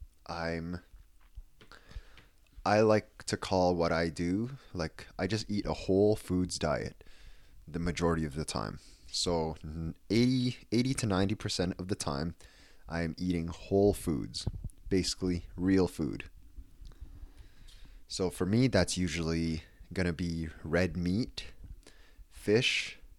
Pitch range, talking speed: 80-95 Hz, 125 wpm